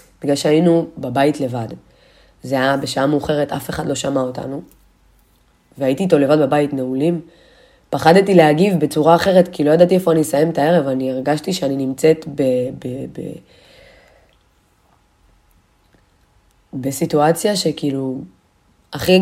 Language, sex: Hebrew, female